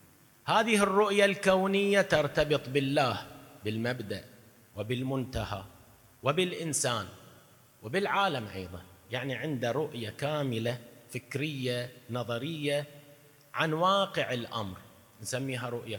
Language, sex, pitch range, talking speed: Arabic, male, 120-175 Hz, 80 wpm